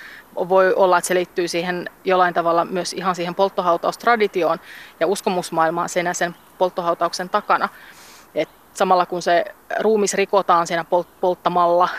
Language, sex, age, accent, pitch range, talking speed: Finnish, female, 30-49, native, 170-190 Hz, 130 wpm